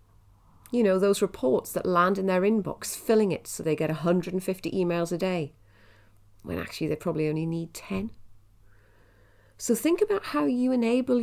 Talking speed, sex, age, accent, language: 165 wpm, female, 40-59, British, English